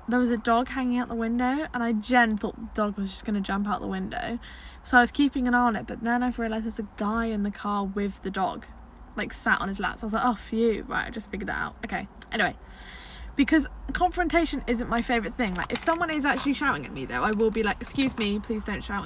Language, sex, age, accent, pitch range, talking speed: English, female, 10-29, British, 210-250 Hz, 270 wpm